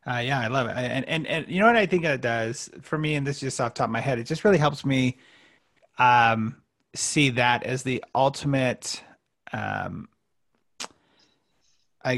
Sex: male